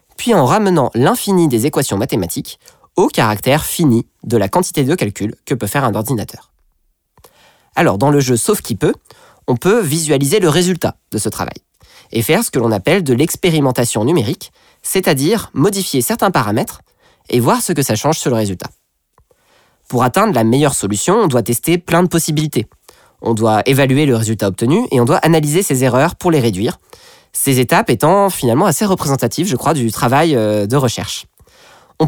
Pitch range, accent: 120-160 Hz, French